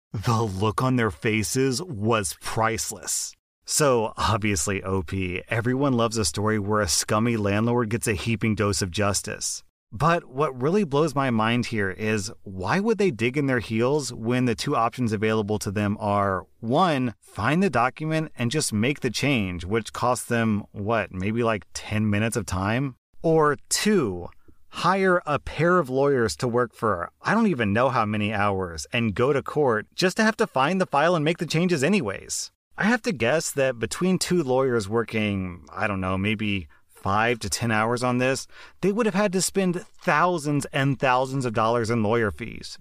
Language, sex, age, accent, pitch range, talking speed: English, male, 30-49, American, 105-150 Hz, 185 wpm